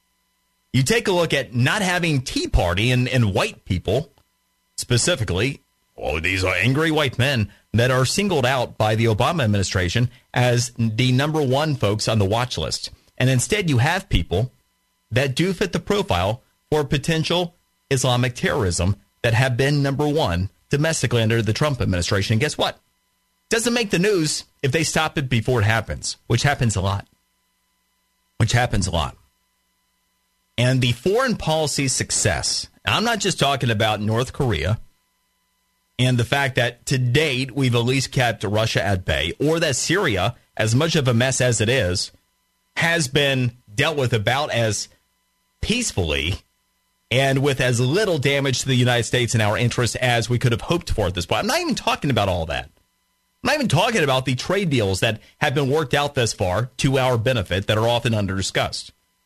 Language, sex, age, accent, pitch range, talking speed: English, male, 30-49, American, 105-140 Hz, 180 wpm